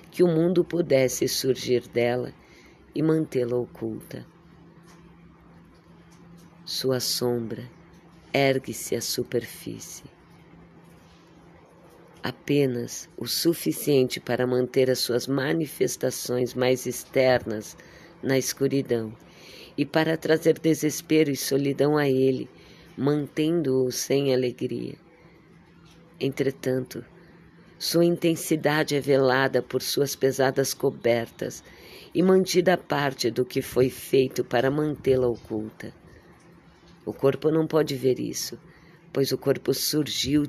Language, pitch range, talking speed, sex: Portuguese, 125-160 Hz, 100 wpm, female